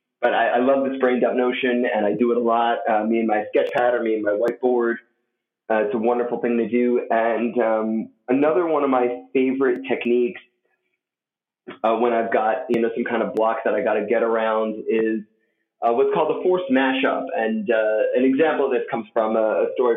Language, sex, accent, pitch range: English, male, American, 115-135 Hz